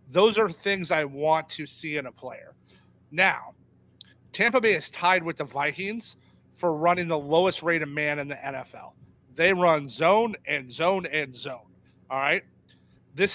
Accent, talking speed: American, 170 wpm